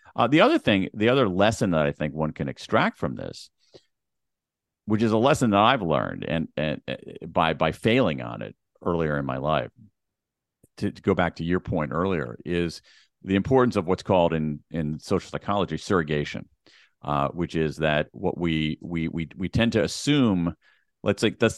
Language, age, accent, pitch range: English, 50-69, American, 80-105 Hz